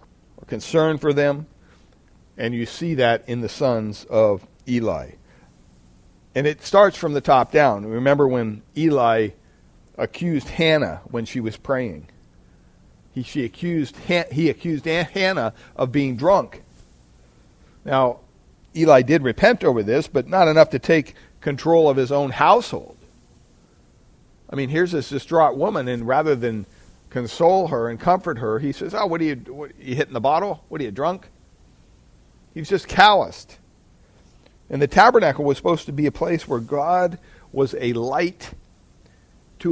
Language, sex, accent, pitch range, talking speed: English, male, American, 110-160 Hz, 155 wpm